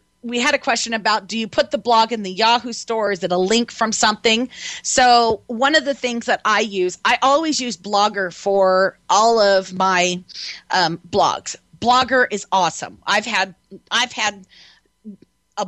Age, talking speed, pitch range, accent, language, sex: 30-49, 170 wpm, 190-230 Hz, American, English, female